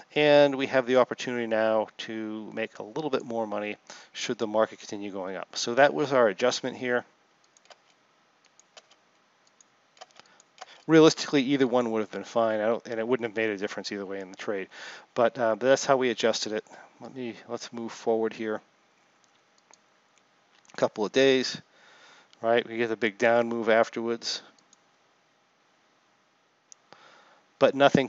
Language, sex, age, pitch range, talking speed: English, male, 40-59, 110-135 Hz, 160 wpm